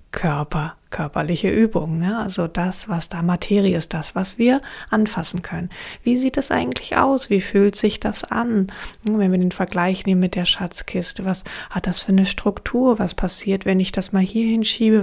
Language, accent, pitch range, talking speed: German, German, 175-215 Hz, 190 wpm